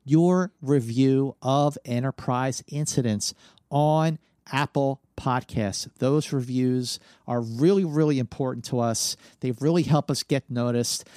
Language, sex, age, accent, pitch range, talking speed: English, male, 50-69, American, 120-155 Hz, 120 wpm